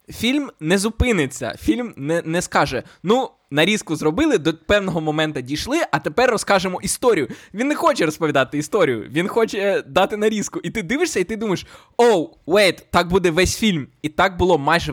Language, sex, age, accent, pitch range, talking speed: Ukrainian, male, 20-39, native, 145-215 Hz, 175 wpm